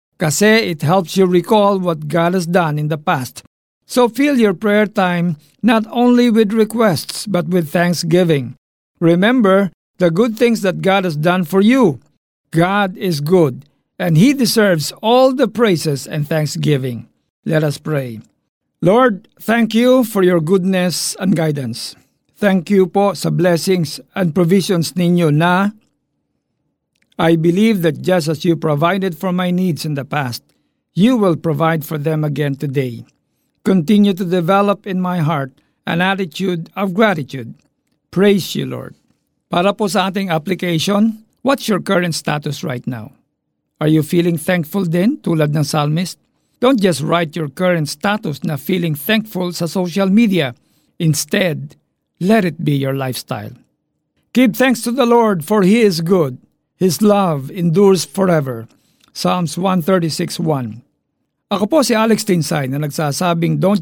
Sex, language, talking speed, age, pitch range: male, Filipino, 150 wpm, 50-69, 155-200 Hz